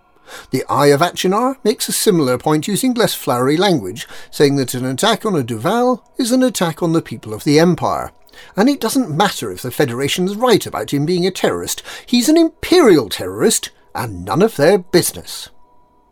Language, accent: English, British